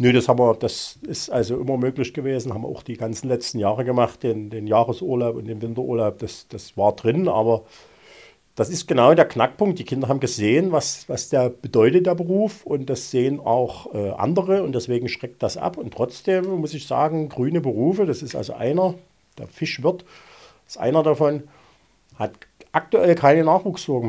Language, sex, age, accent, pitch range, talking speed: German, male, 50-69, German, 125-175 Hz, 175 wpm